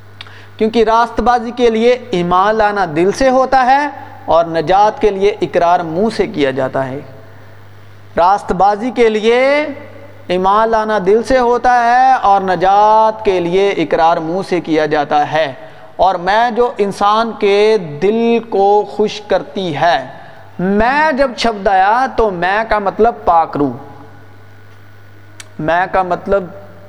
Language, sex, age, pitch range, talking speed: Urdu, male, 40-59, 145-215 Hz, 140 wpm